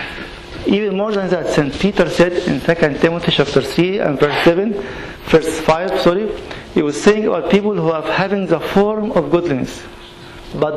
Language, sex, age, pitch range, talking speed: English, male, 50-69, 155-190 Hz, 175 wpm